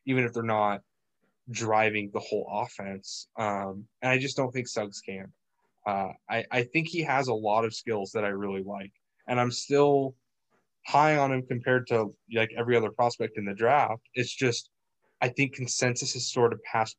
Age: 20-39